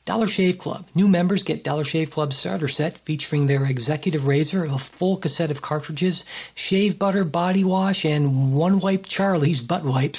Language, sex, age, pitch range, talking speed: English, male, 40-59, 150-180 Hz, 175 wpm